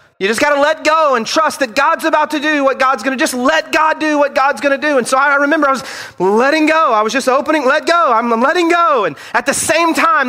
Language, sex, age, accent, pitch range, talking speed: English, male, 30-49, American, 195-310 Hz, 285 wpm